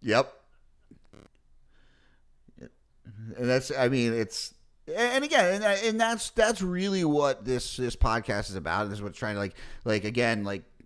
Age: 30-49